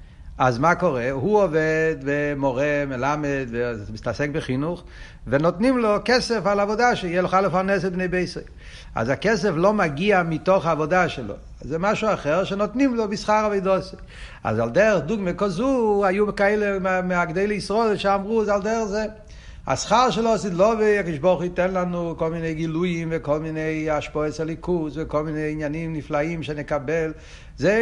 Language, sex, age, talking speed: Hebrew, male, 60-79, 150 wpm